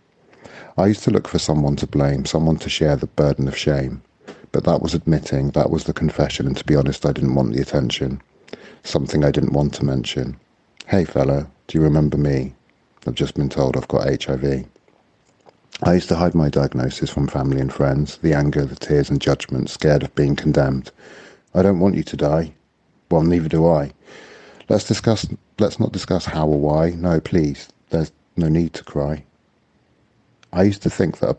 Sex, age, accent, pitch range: male, 40-59, British, 70-80 Hz